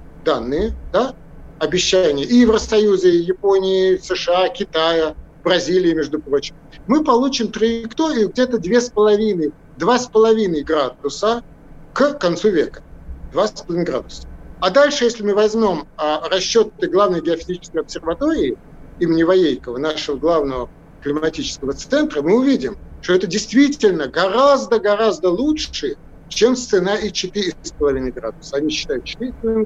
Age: 50-69